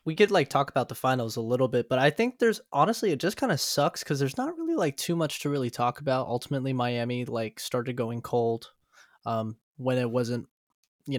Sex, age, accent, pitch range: male, 20-39, American, 120-145 Hz